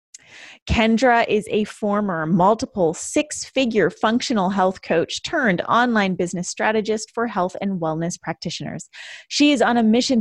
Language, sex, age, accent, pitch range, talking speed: English, female, 20-39, American, 170-225 Hz, 135 wpm